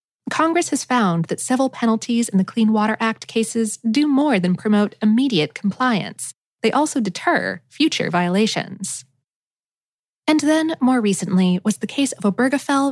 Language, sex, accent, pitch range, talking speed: English, female, American, 185-265 Hz, 150 wpm